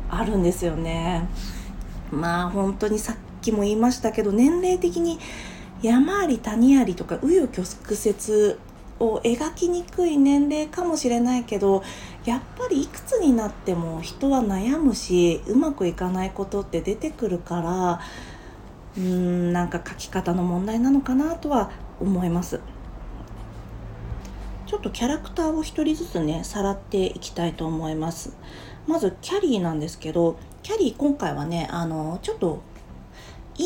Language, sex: Japanese, female